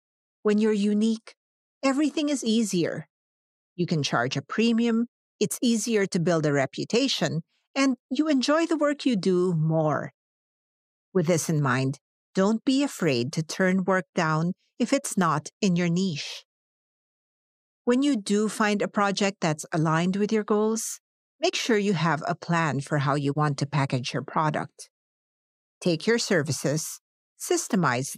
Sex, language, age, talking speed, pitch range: female, English, 50-69, 150 wpm, 160-220 Hz